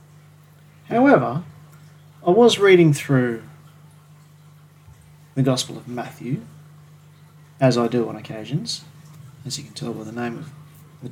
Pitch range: 135-155 Hz